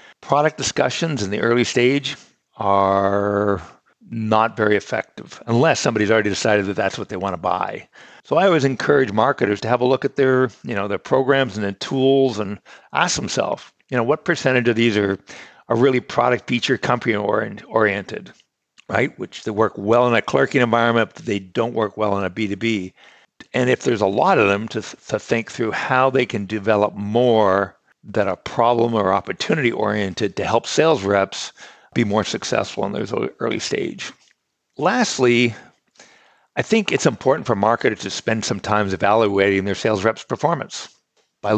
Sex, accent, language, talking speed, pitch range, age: male, American, English, 180 wpm, 105-125 Hz, 60-79